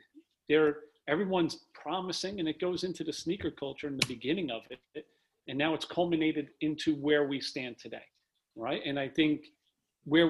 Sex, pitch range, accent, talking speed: male, 135-155 Hz, American, 170 wpm